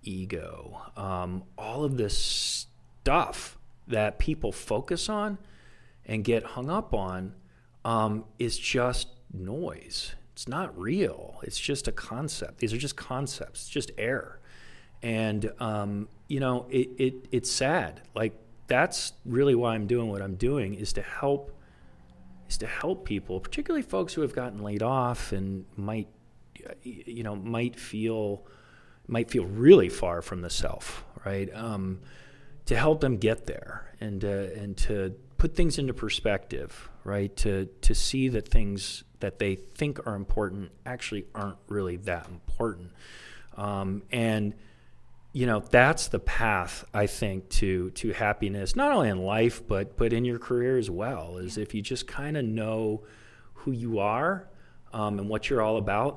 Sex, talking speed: male, 155 wpm